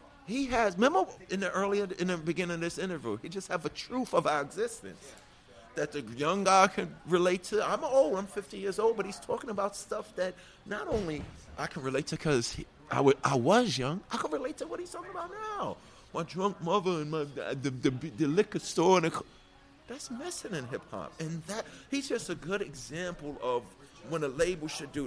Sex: male